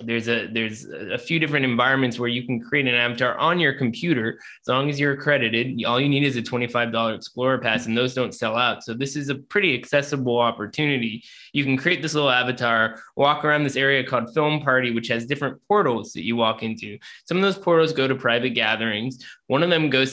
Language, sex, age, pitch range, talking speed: English, male, 20-39, 115-140 Hz, 225 wpm